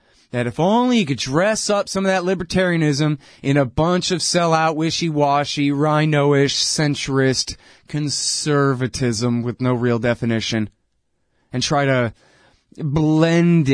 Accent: American